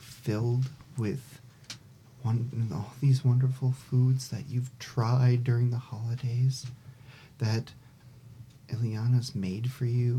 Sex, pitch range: male, 115-130 Hz